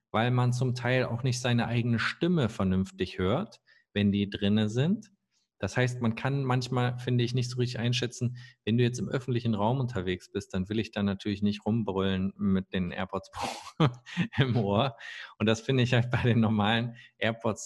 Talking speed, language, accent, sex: 185 wpm, German, German, male